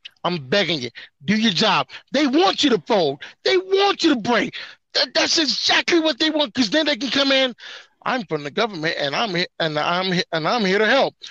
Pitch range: 225-285 Hz